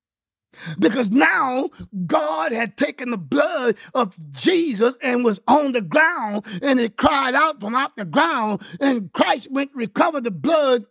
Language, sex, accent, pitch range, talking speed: English, male, American, 235-300 Hz, 155 wpm